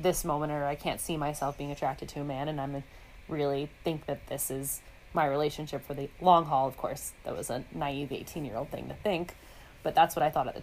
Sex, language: female, English